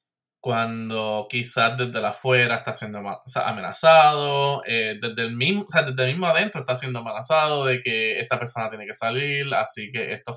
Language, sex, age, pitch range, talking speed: Spanish, male, 20-39, 115-140 Hz, 155 wpm